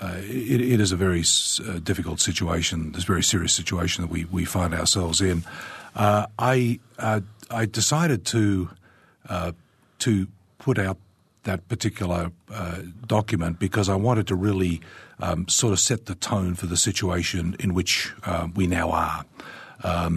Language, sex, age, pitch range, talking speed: English, male, 50-69, 85-105 Hz, 165 wpm